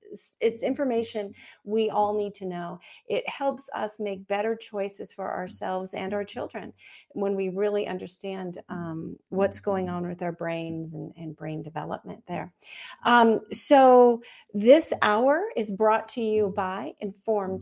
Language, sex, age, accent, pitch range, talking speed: English, female, 40-59, American, 190-225 Hz, 150 wpm